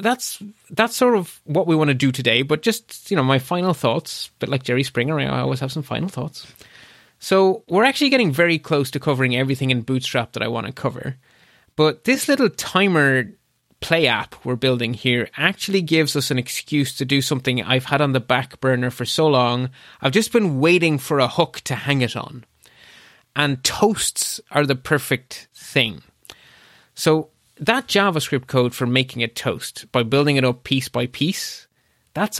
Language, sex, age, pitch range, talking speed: English, male, 20-39, 125-165 Hz, 190 wpm